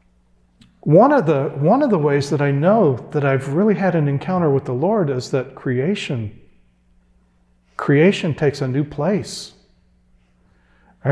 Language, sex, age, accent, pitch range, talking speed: English, male, 50-69, American, 115-155 Hz, 150 wpm